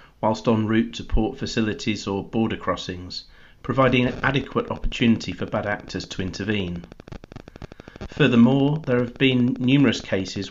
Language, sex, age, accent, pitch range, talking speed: English, male, 40-59, British, 100-120 Hz, 135 wpm